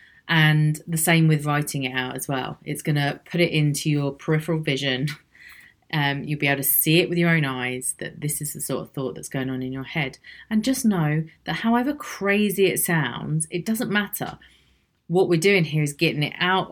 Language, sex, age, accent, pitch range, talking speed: English, female, 30-49, British, 135-165 Hz, 220 wpm